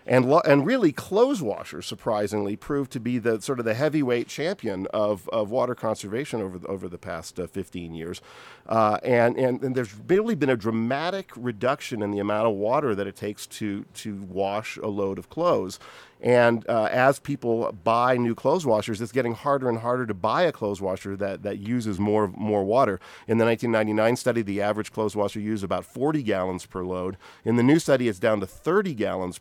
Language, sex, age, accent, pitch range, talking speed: English, male, 40-59, American, 100-125 Hz, 205 wpm